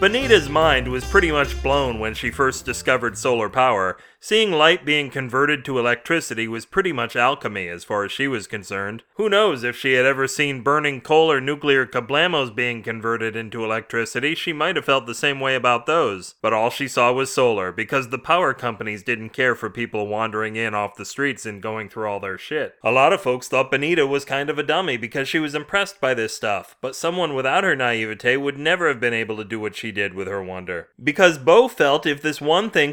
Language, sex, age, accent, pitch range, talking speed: English, male, 30-49, American, 115-150 Hz, 220 wpm